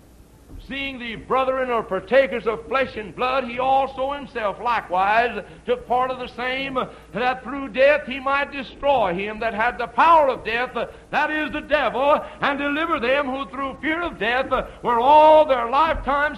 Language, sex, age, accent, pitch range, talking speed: English, male, 60-79, American, 205-280 Hz, 170 wpm